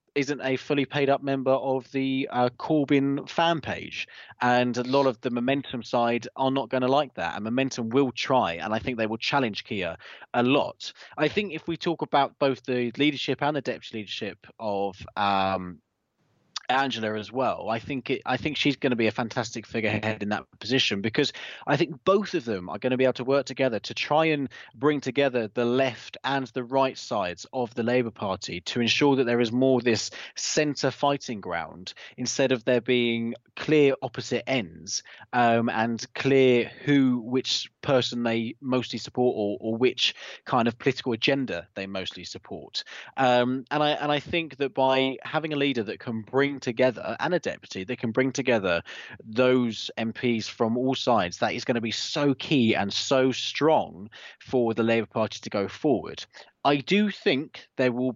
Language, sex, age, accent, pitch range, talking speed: English, male, 20-39, British, 115-135 Hz, 190 wpm